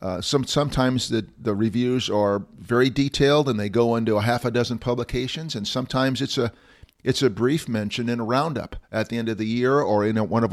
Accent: American